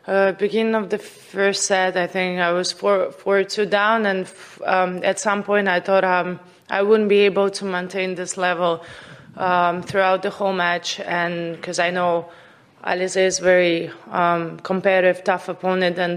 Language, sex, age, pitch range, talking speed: English, female, 20-39, 170-190 Hz, 175 wpm